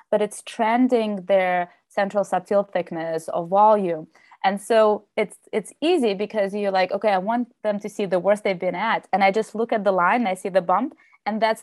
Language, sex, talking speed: English, female, 210 wpm